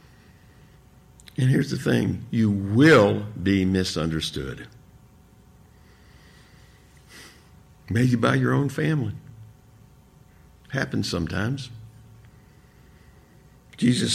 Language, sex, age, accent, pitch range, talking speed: English, male, 60-79, American, 90-125 Hz, 70 wpm